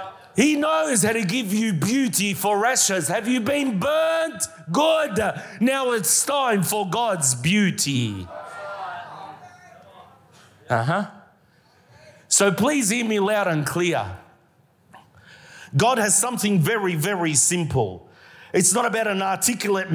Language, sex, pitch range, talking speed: English, male, 185-235 Hz, 120 wpm